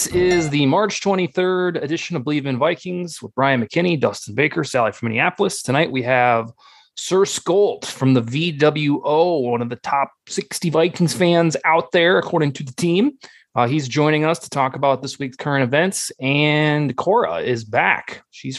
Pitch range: 130-170 Hz